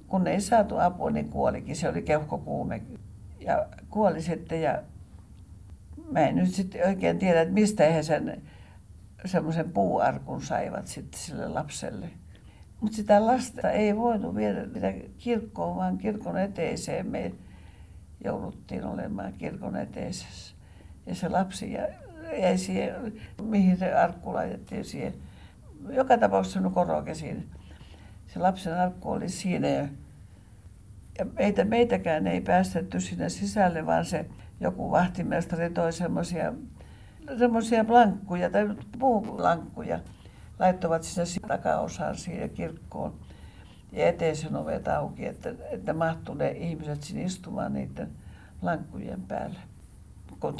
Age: 60-79